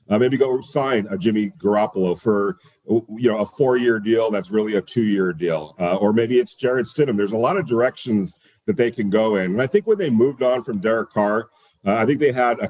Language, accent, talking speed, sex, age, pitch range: English, American, 235 wpm, male, 40-59, 105-125 Hz